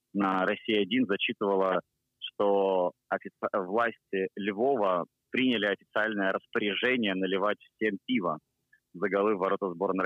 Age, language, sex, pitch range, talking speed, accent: 30-49, Russian, male, 95-120 Hz, 105 wpm, native